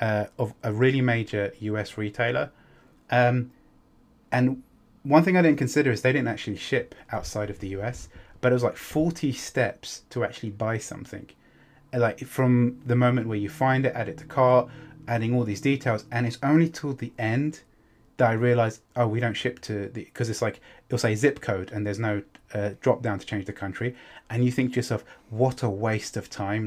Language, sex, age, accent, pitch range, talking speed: English, male, 30-49, British, 110-130 Hz, 205 wpm